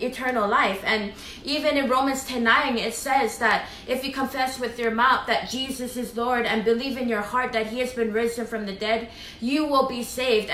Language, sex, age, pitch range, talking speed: English, female, 20-39, 225-265 Hz, 215 wpm